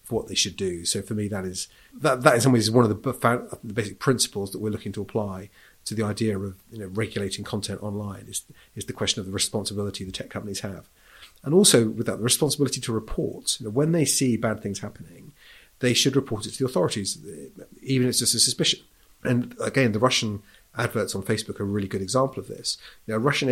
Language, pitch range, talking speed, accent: English, 100-120 Hz, 235 wpm, British